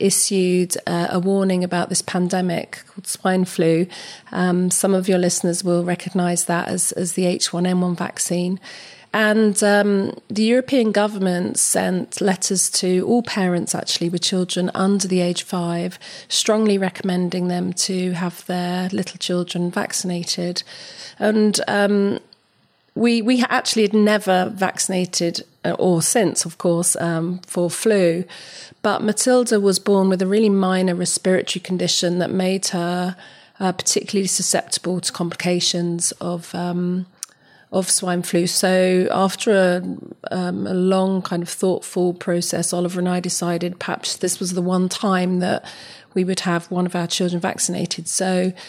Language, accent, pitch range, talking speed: English, British, 175-195 Hz, 145 wpm